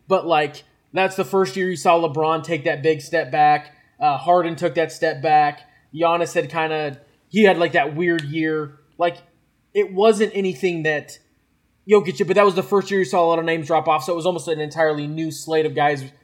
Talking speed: 220 wpm